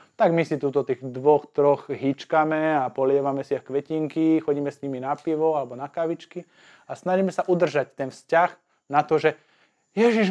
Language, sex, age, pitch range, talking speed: Slovak, male, 20-39, 145-175 Hz, 180 wpm